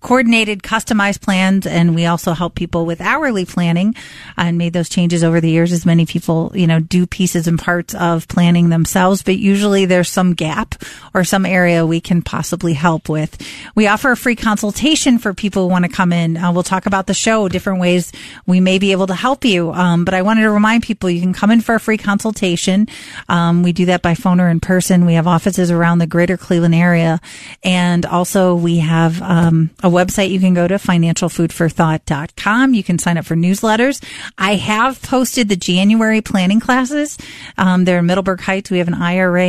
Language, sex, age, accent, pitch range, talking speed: English, female, 40-59, American, 170-205 Hz, 205 wpm